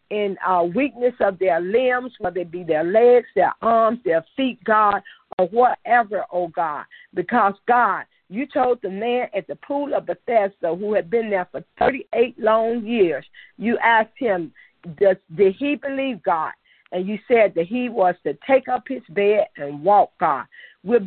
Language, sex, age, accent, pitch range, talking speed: English, female, 50-69, American, 195-250 Hz, 175 wpm